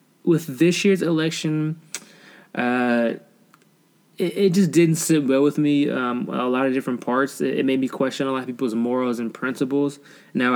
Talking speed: 180 wpm